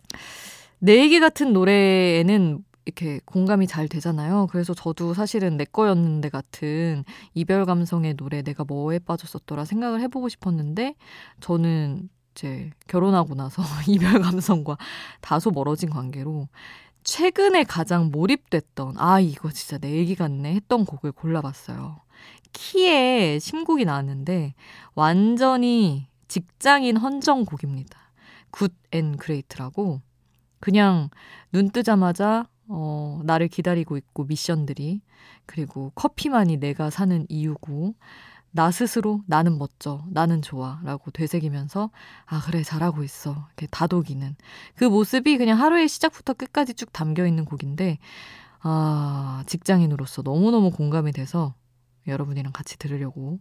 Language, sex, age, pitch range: Korean, female, 20-39, 145-200 Hz